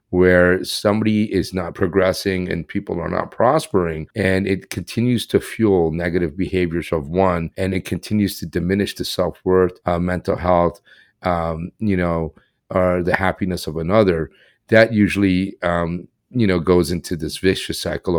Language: English